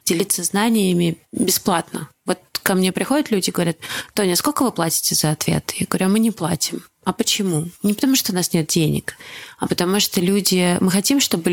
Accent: native